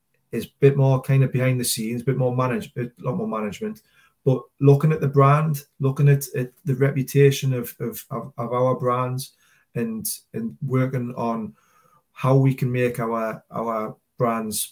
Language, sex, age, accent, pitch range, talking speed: English, male, 30-49, British, 120-145 Hz, 180 wpm